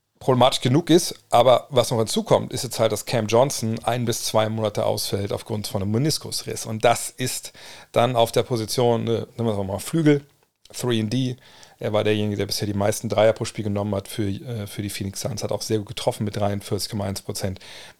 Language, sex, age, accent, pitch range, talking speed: German, male, 40-59, German, 105-125 Hz, 200 wpm